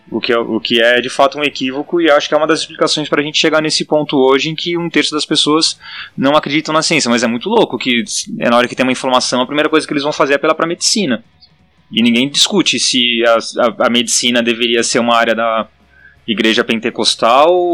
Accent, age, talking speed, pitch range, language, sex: Brazilian, 20-39, 230 wpm, 120-155 Hz, Portuguese, male